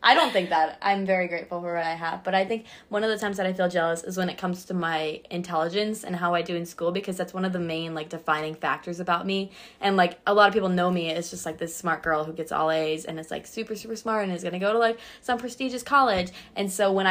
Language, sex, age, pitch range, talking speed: English, female, 20-39, 165-190 Hz, 290 wpm